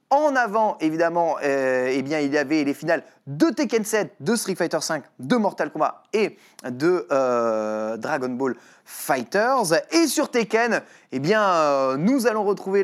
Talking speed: 170 wpm